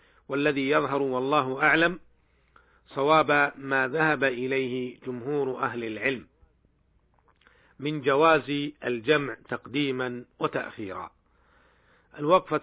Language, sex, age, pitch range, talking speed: Arabic, male, 50-69, 120-145 Hz, 80 wpm